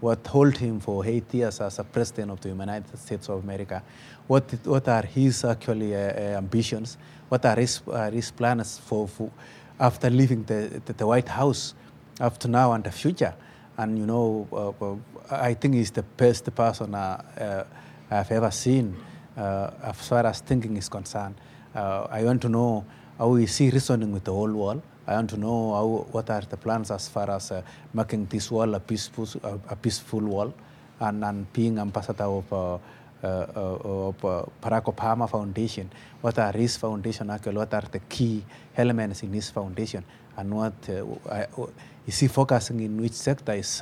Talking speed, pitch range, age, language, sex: 185 wpm, 100-120 Hz, 30-49, English, male